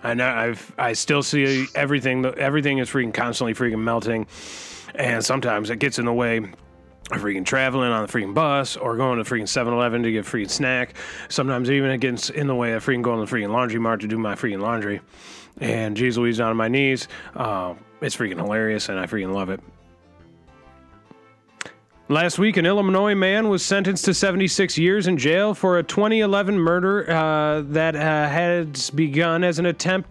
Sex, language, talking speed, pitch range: male, English, 195 wpm, 125-175 Hz